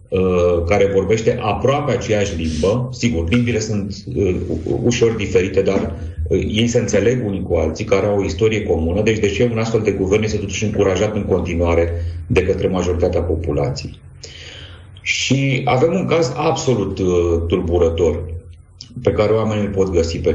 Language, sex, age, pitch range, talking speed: Romanian, male, 40-59, 85-110 Hz, 155 wpm